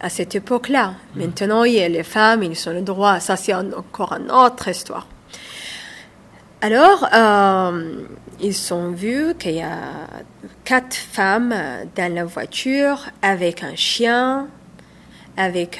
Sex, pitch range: female, 190-250 Hz